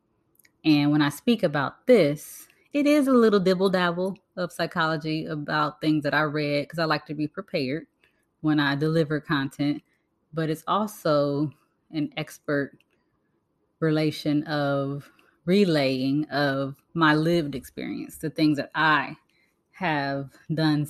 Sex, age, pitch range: female, 20-39, 145-175 Hz